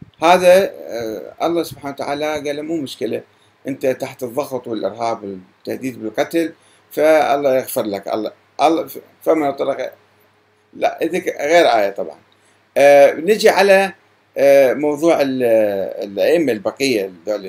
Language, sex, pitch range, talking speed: Arabic, male, 115-175 Hz, 100 wpm